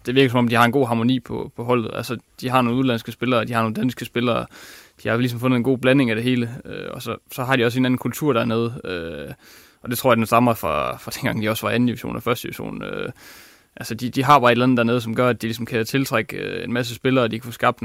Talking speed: 295 wpm